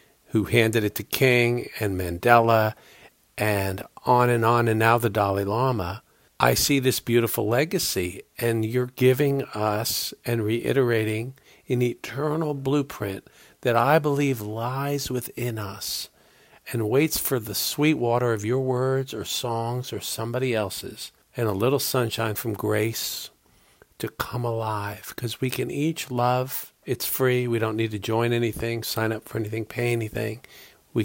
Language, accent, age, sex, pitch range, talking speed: English, American, 50-69, male, 105-125 Hz, 155 wpm